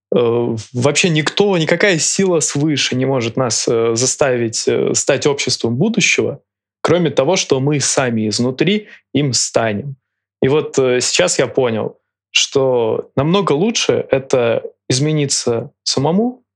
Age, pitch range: 20-39, 110-150 Hz